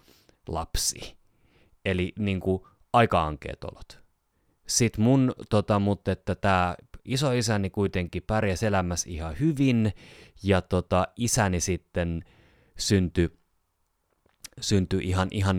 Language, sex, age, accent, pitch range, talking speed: Finnish, male, 30-49, native, 80-95 Hz, 100 wpm